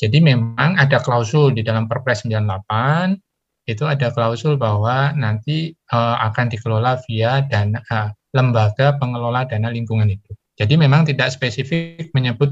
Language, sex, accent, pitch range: Indonesian, male, native, 110-135 Hz